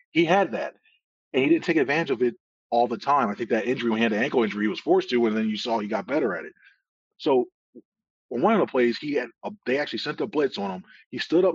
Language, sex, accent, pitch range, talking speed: English, male, American, 120-170 Hz, 285 wpm